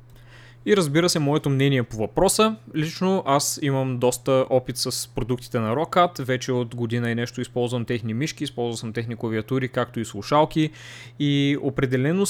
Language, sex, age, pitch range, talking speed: Bulgarian, male, 20-39, 120-150 Hz, 160 wpm